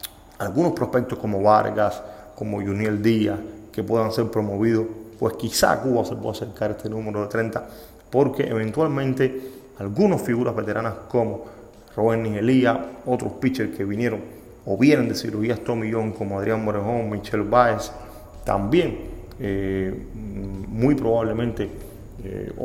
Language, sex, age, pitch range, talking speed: Spanish, male, 30-49, 105-125 Hz, 130 wpm